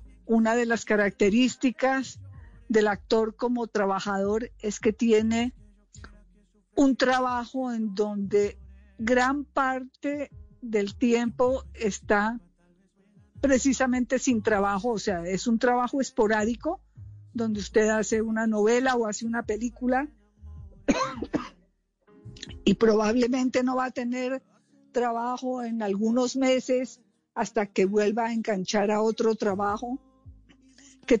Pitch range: 205-245 Hz